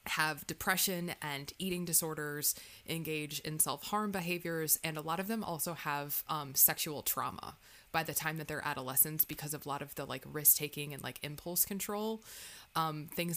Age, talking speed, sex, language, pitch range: 20-39, 180 wpm, female, English, 150-170 Hz